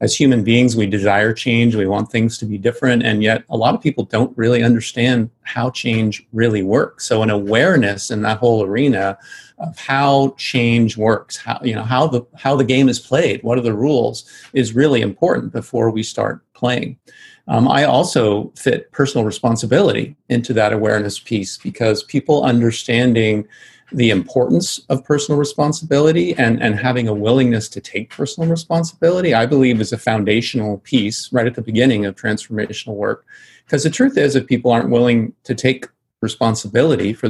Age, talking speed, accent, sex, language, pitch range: 40-59, 175 wpm, American, male, English, 110-130 Hz